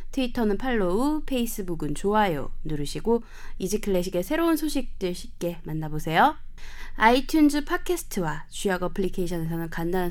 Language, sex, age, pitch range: Korean, female, 20-39, 165-245 Hz